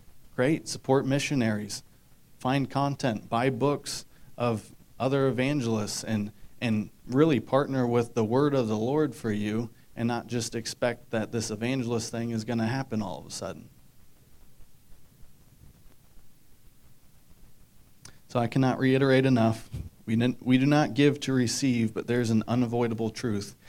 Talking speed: 140 wpm